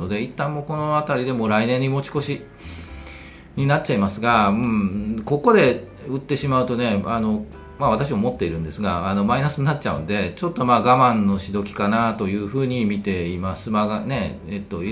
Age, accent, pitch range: 40-59, native, 100-135 Hz